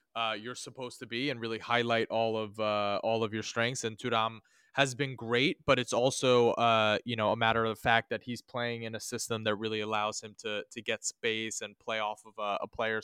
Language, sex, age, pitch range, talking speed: English, male, 20-39, 110-130 Hz, 235 wpm